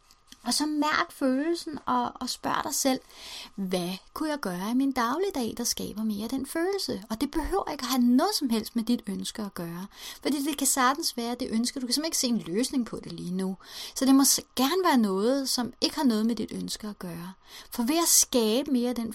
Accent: native